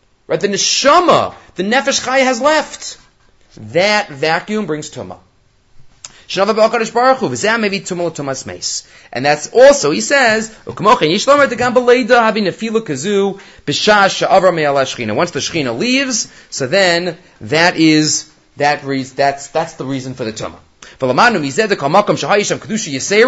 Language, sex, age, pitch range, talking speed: English, male, 30-49, 145-215 Hz, 100 wpm